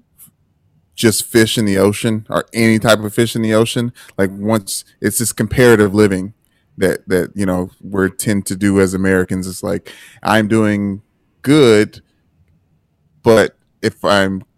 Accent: American